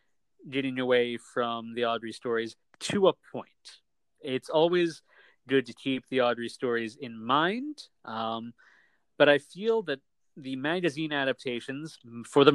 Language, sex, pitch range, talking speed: English, male, 120-155 Hz, 140 wpm